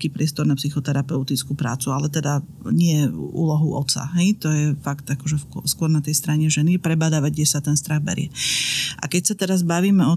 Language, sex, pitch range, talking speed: Slovak, female, 155-180 Hz, 185 wpm